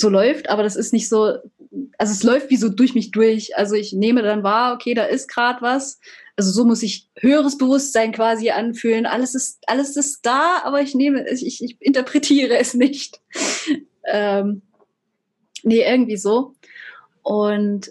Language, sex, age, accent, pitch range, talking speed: German, female, 20-39, German, 200-240 Hz, 175 wpm